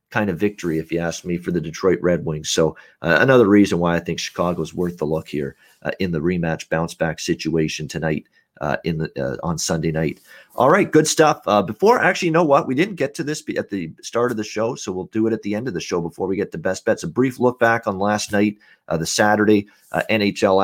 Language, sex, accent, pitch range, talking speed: English, male, American, 95-125 Hz, 260 wpm